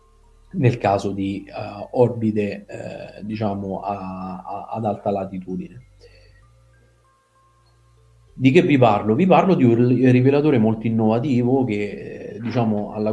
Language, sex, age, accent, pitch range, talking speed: Italian, male, 30-49, native, 100-120 Hz, 120 wpm